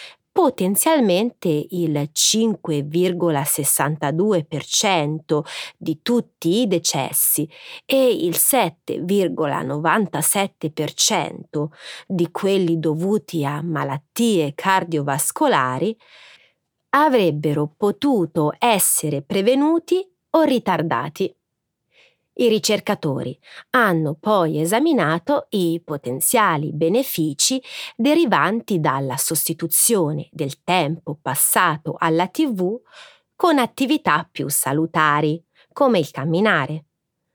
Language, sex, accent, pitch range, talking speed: Italian, female, native, 155-225 Hz, 70 wpm